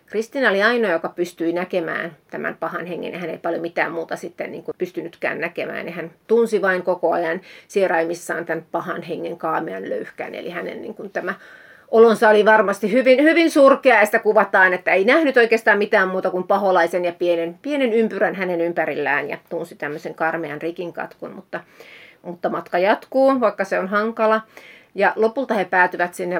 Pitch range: 175-210 Hz